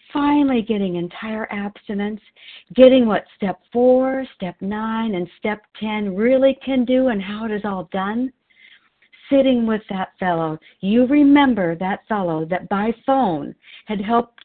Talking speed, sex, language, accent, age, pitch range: 145 wpm, female, English, American, 50-69, 175-225 Hz